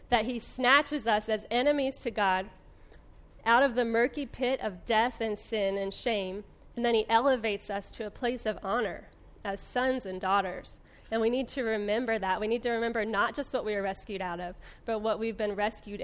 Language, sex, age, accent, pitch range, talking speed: English, female, 10-29, American, 205-240 Hz, 210 wpm